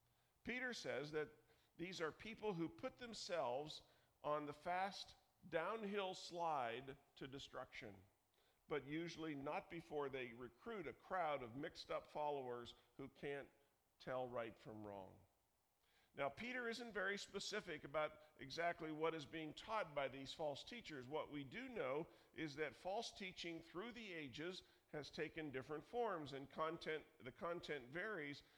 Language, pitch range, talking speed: English, 135-170 Hz, 145 wpm